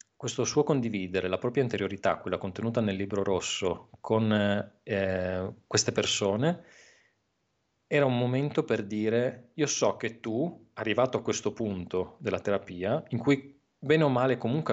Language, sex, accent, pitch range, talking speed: Italian, male, native, 100-130 Hz, 145 wpm